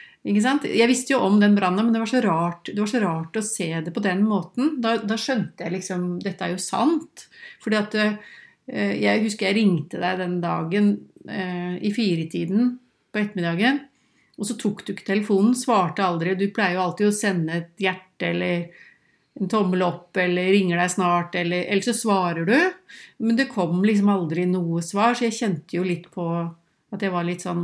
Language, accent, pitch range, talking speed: English, Swedish, 180-230 Hz, 185 wpm